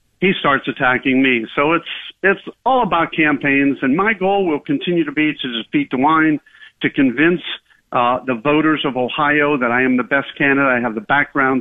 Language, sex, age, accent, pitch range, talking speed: English, male, 50-69, American, 130-170 Hz, 195 wpm